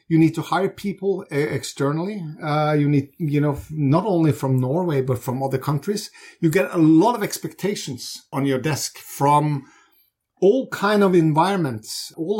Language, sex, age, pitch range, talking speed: English, male, 50-69, 140-170 Hz, 165 wpm